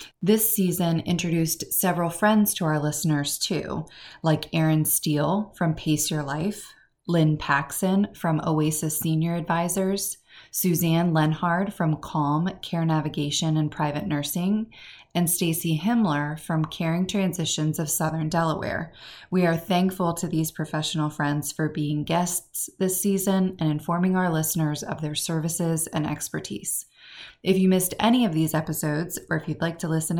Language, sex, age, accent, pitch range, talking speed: English, female, 20-39, American, 155-185 Hz, 145 wpm